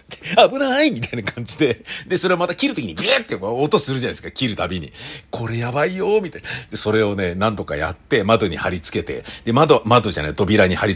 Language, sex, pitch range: Japanese, male, 85-120 Hz